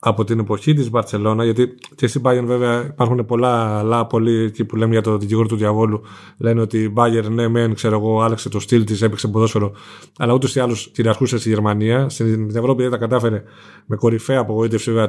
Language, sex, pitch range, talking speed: Greek, male, 110-125 Hz, 215 wpm